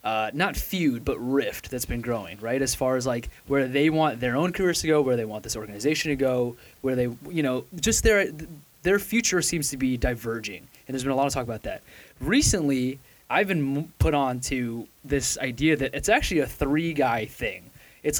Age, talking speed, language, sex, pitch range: 20-39, 215 wpm, English, male, 120-155 Hz